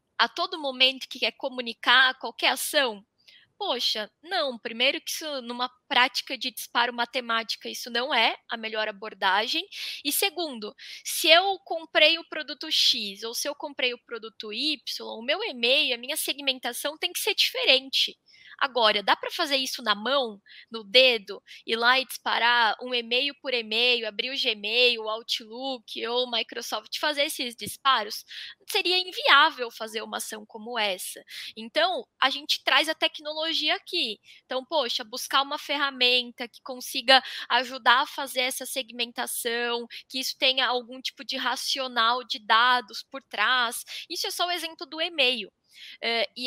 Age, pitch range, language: 10-29, 235-295 Hz, Portuguese